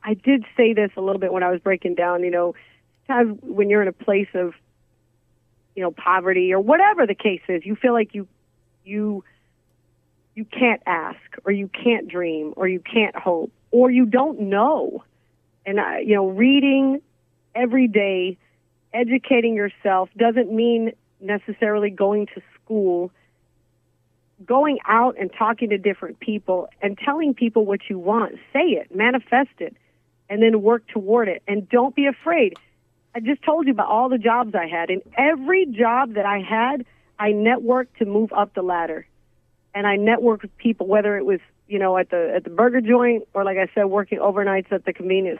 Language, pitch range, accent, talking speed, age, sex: English, 185-235 Hz, American, 180 wpm, 40-59, female